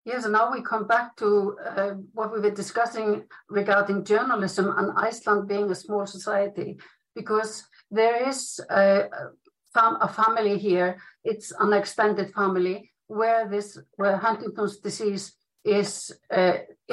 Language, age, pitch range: English, 60-79, 195-225 Hz